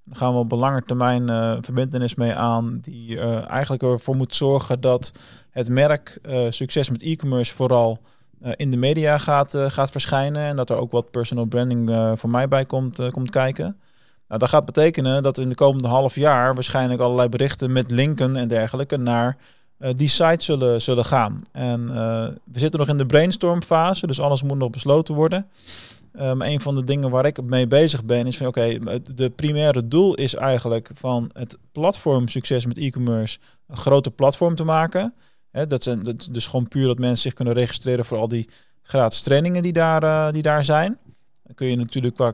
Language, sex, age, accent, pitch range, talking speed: Dutch, male, 20-39, Dutch, 120-140 Hz, 205 wpm